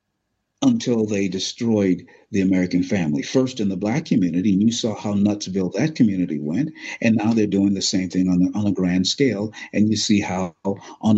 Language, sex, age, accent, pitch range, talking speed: English, male, 50-69, American, 95-115 Hz, 200 wpm